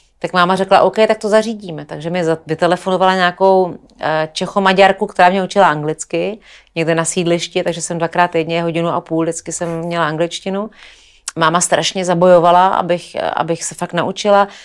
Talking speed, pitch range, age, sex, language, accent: 155 wpm, 165-190 Hz, 40-59, female, Czech, native